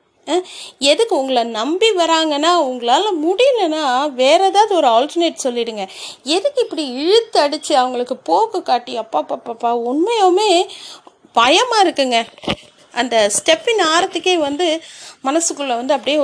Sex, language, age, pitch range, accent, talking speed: female, Tamil, 30-49, 245-310 Hz, native, 105 wpm